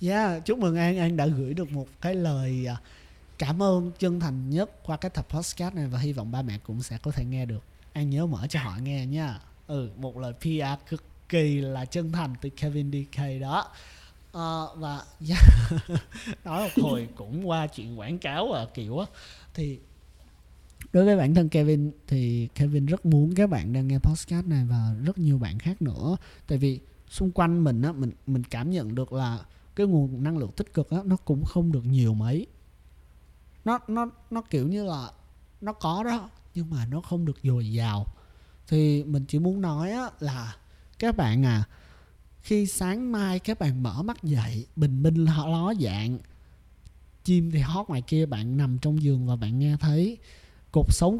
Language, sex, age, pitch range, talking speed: Vietnamese, male, 20-39, 125-170 Hz, 195 wpm